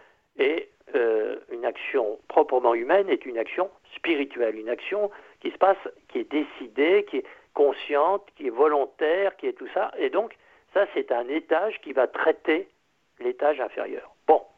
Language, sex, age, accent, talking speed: French, male, 60-79, French, 165 wpm